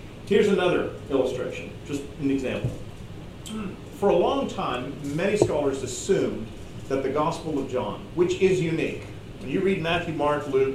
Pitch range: 125-160 Hz